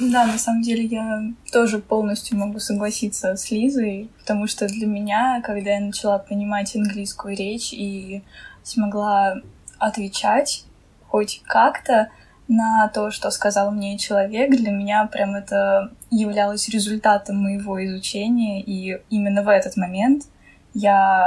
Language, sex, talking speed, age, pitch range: Russian, female, 130 wpm, 10-29, 200-230 Hz